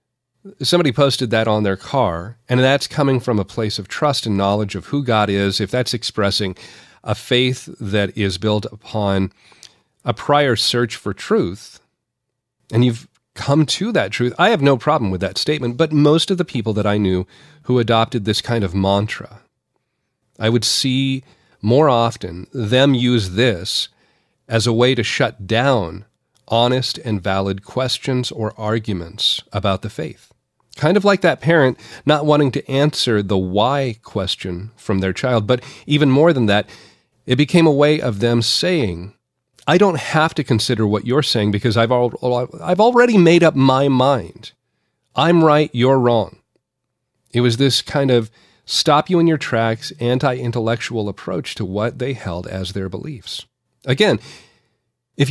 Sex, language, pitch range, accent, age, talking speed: male, English, 110-140 Hz, American, 40-59, 160 wpm